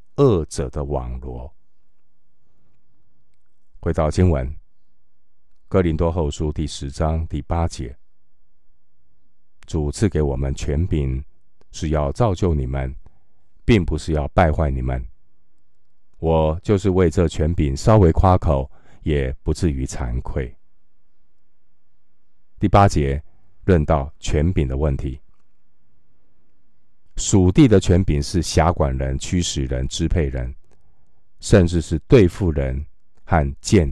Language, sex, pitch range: Chinese, male, 70-90 Hz